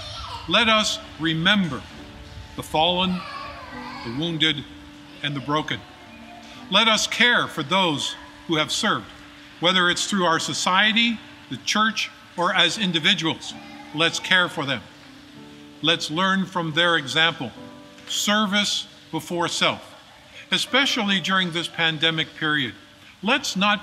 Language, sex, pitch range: English, male, 150-200 Hz